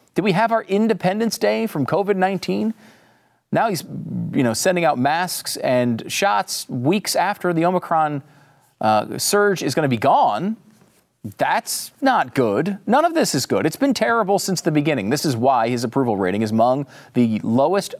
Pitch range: 115-185 Hz